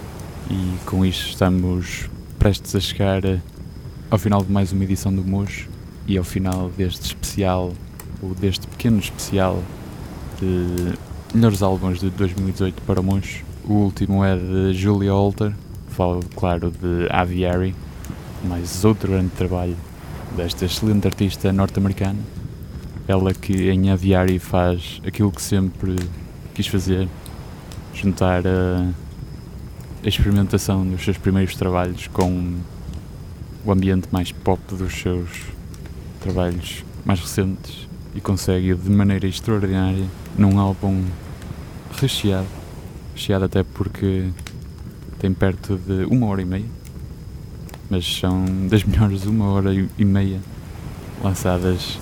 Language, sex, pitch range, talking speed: Portuguese, male, 90-100 Hz, 120 wpm